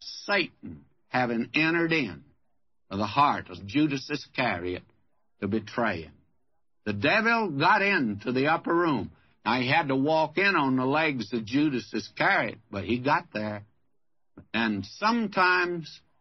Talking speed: 135 wpm